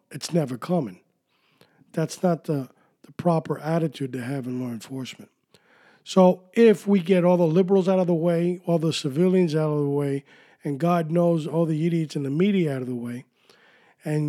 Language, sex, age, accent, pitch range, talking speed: English, male, 50-69, American, 150-180 Hz, 195 wpm